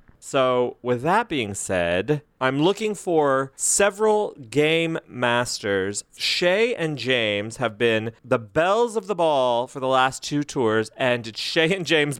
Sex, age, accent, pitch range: male, 30-49, American, 120-155 Hz